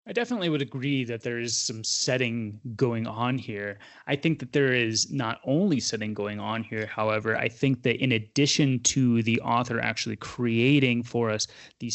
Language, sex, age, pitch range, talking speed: English, male, 20-39, 115-135 Hz, 185 wpm